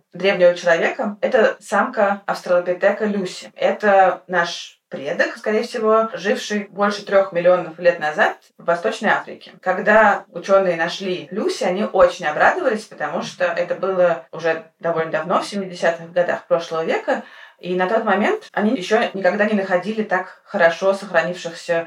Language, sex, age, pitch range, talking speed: Russian, female, 20-39, 175-205 Hz, 145 wpm